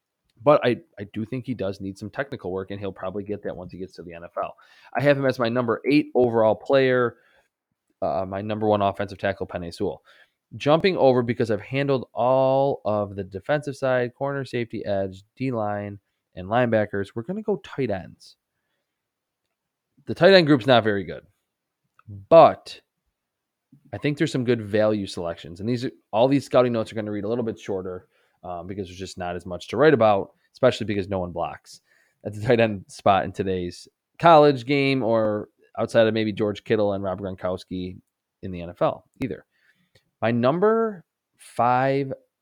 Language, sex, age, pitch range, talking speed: English, male, 20-39, 100-130 Hz, 185 wpm